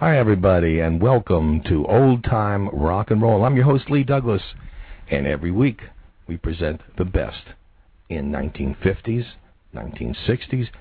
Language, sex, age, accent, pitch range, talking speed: English, male, 60-79, American, 80-100 Hz, 140 wpm